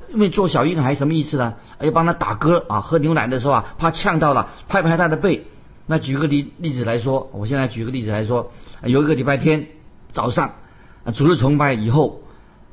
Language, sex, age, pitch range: Chinese, male, 50-69, 135-185 Hz